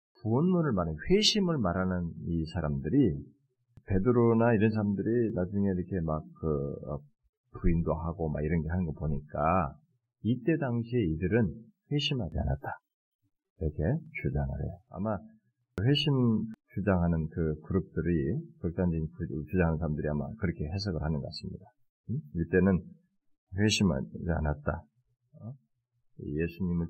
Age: 40-59